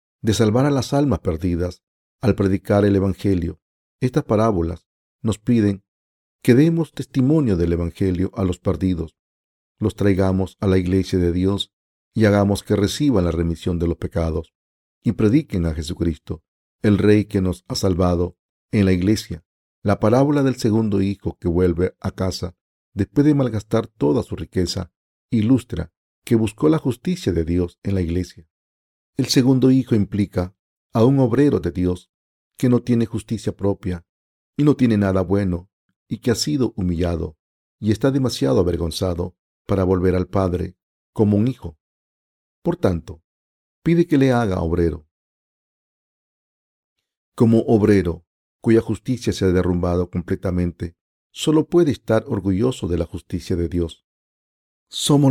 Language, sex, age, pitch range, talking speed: Spanish, male, 50-69, 90-115 Hz, 150 wpm